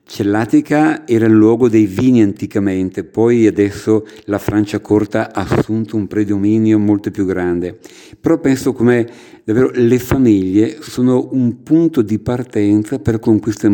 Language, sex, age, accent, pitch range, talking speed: English, male, 50-69, Italian, 105-120 Hz, 140 wpm